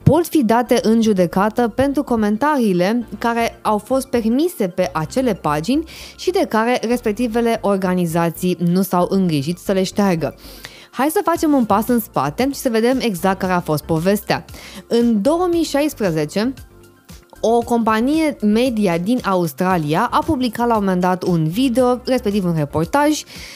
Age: 20-39